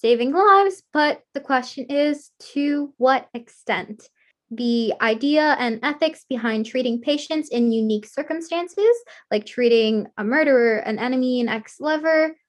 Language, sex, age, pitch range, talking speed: English, female, 10-29, 225-300 Hz, 135 wpm